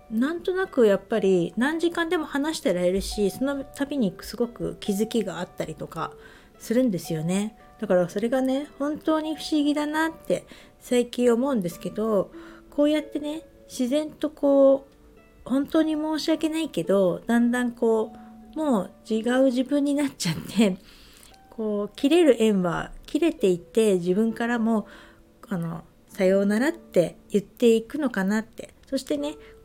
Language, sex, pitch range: Japanese, female, 195-285 Hz